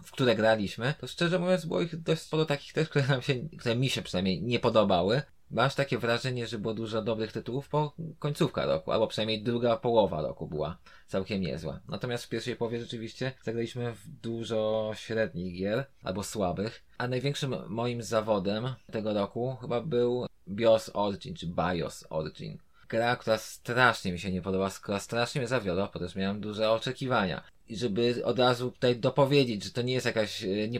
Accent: native